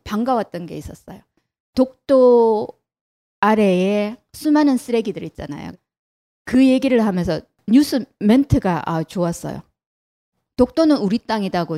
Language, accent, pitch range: Korean, native, 185-255 Hz